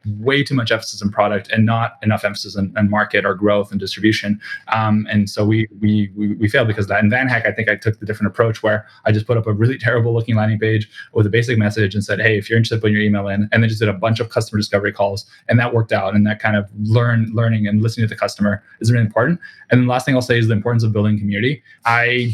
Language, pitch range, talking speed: English, 105-115 Hz, 275 wpm